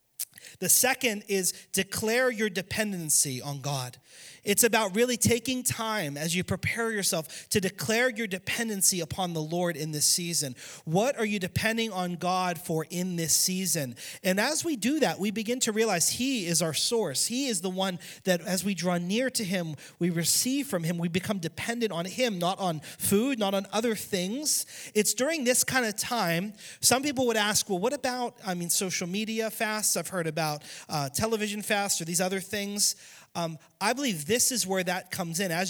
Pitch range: 170-215 Hz